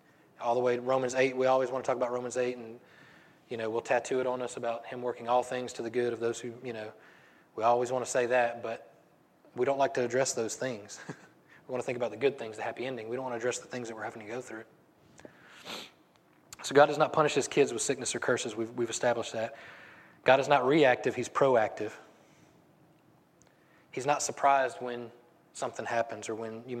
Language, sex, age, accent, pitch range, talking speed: English, male, 20-39, American, 120-140 Hz, 230 wpm